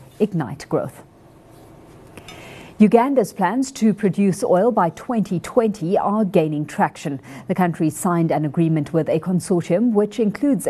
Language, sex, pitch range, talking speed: English, female, 165-215 Hz, 125 wpm